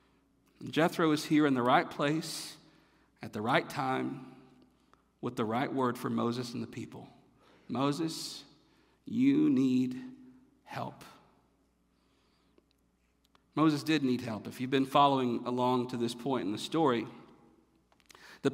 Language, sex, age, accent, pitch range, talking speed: English, male, 50-69, American, 135-185 Hz, 130 wpm